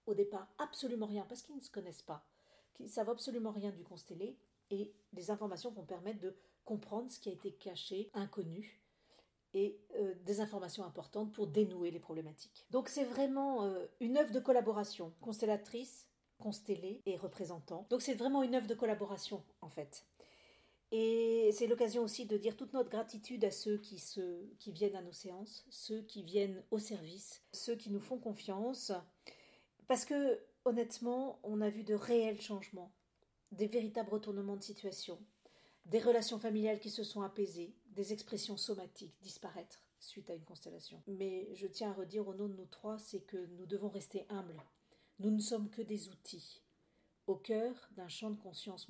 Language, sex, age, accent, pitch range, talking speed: French, female, 40-59, French, 195-230 Hz, 180 wpm